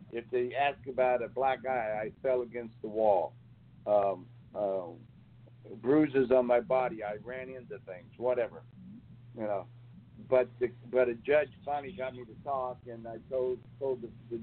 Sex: male